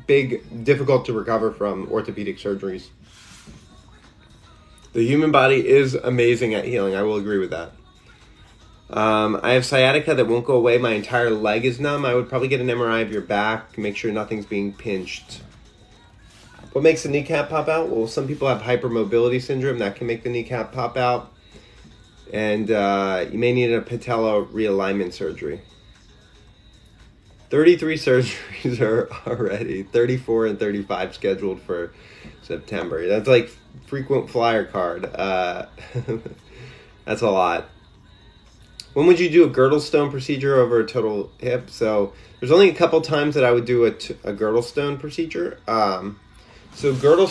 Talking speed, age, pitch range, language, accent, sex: 155 wpm, 30-49, 100-125 Hz, English, American, male